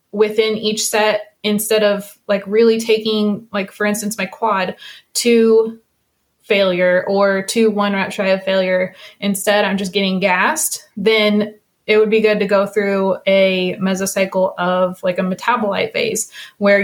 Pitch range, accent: 190-215 Hz, American